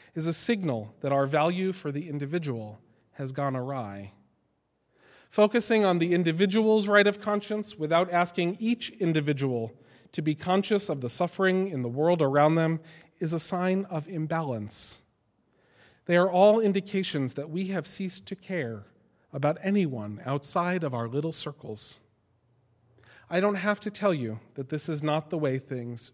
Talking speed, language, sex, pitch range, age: 160 wpm, English, male, 130-180 Hz, 40-59